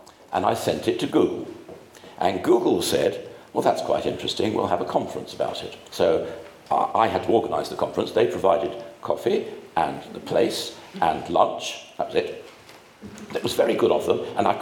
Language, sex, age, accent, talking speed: English, male, 50-69, British, 185 wpm